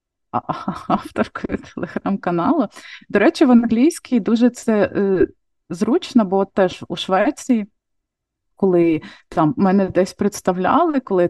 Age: 20-39